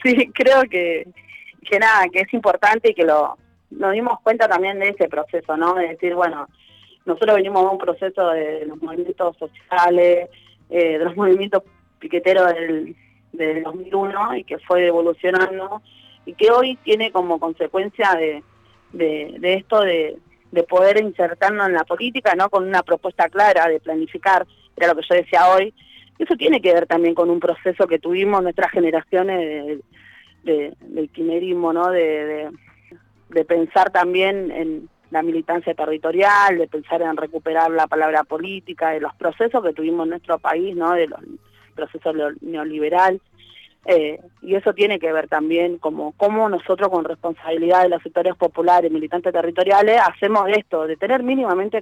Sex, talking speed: female, 165 wpm